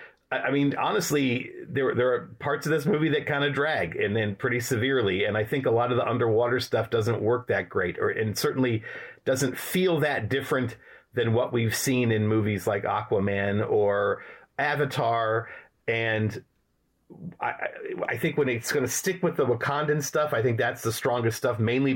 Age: 40-59